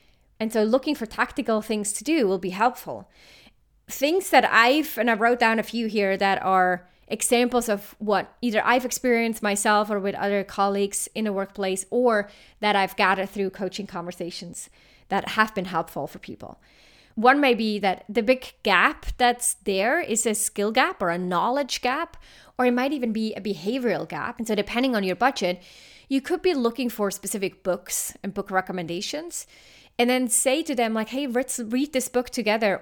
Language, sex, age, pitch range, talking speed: English, female, 30-49, 195-245 Hz, 190 wpm